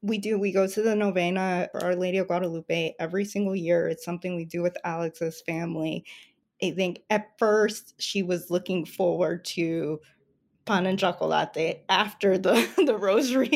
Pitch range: 175-200 Hz